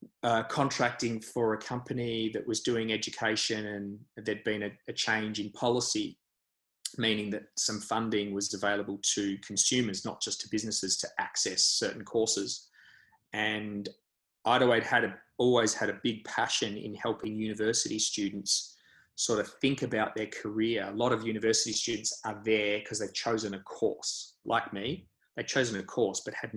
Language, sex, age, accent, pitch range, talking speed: English, male, 20-39, Australian, 100-115 Hz, 165 wpm